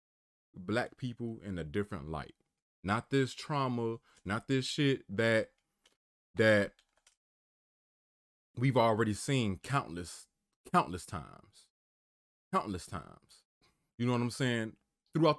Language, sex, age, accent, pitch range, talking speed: English, male, 20-39, American, 95-130 Hz, 110 wpm